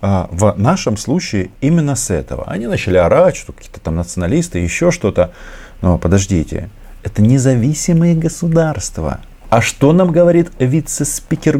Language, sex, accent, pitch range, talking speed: Russian, male, native, 90-135 Hz, 130 wpm